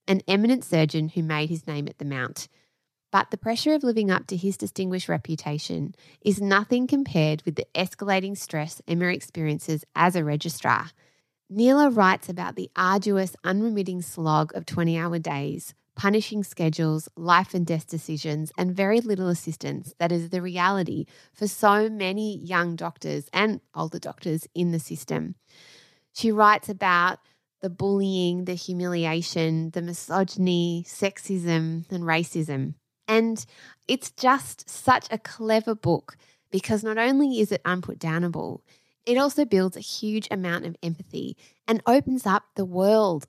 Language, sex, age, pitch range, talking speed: English, female, 20-39, 160-205 Hz, 145 wpm